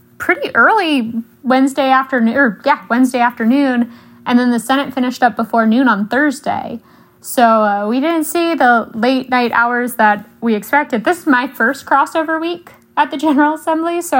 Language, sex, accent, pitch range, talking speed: English, female, American, 215-270 Hz, 175 wpm